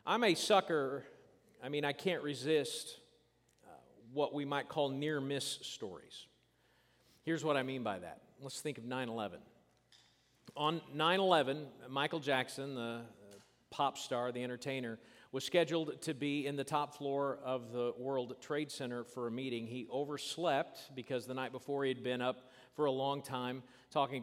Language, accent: English, American